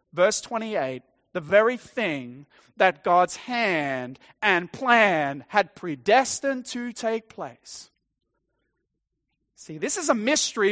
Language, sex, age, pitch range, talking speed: English, male, 30-49, 195-255 Hz, 110 wpm